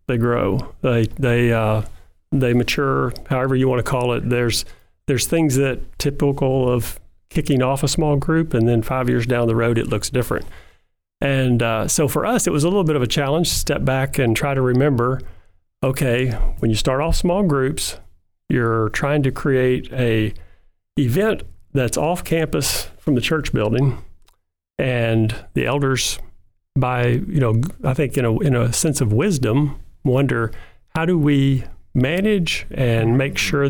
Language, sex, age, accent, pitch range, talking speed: English, male, 40-59, American, 115-140 Hz, 175 wpm